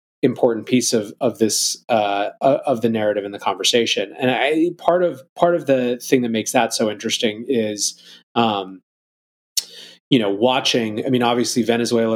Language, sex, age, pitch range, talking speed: English, male, 30-49, 115-150 Hz, 170 wpm